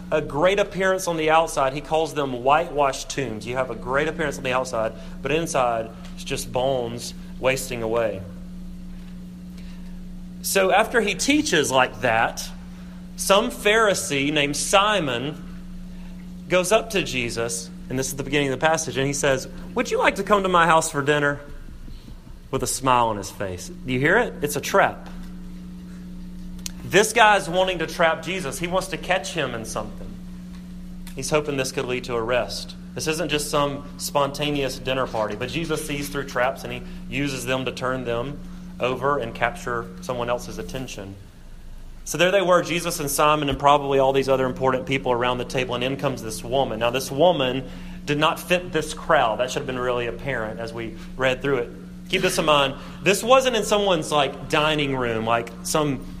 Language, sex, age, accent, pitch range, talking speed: English, male, 30-49, American, 125-180 Hz, 185 wpm